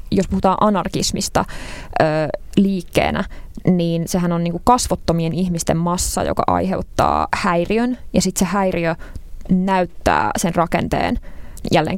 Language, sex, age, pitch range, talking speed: Finnish, female, 20-39, 165-200 Hz, 115 wpm